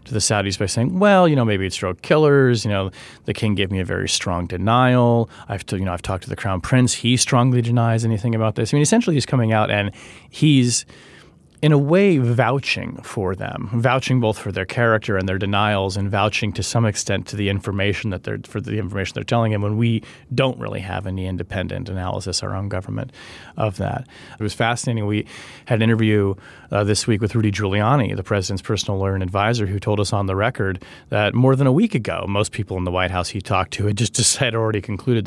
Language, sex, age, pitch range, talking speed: English, male, 30-49, 100-125 Hz, 230 wpm